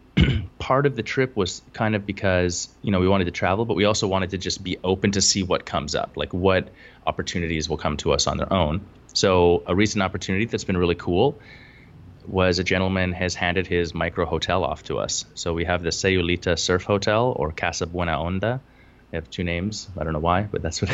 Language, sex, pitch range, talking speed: English, male, 90-105 Hz, 225 wpm